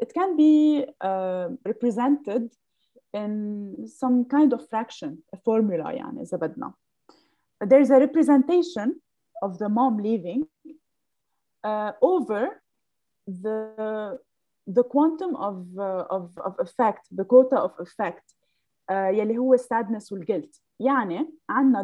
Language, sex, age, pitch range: Arabic, female, 20-39, 205-285 Hz